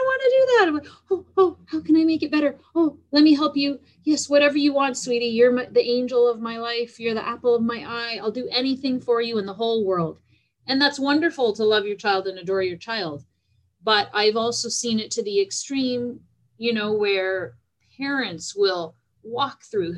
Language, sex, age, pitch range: English, female, 30-49, 190-265 Hz